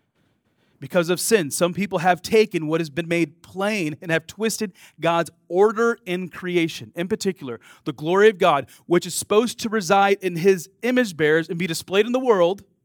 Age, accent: 30-49, American